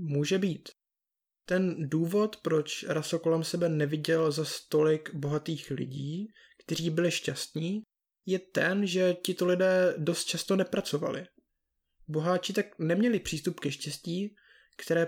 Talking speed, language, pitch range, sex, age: 125 wpm, Czech, 155-185 Hz, male, 20-39